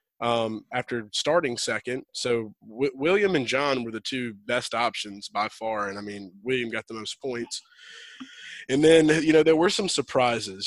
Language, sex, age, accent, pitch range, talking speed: English, male, 20-39, American, 115-140 Hz, 180 wpm